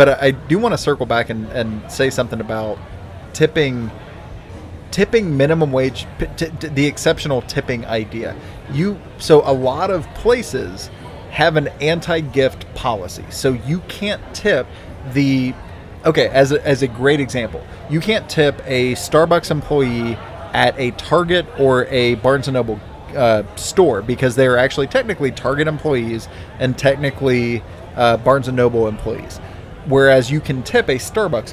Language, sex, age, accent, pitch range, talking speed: English, male, 30-49, American, 110-145 Hz, 140 wpm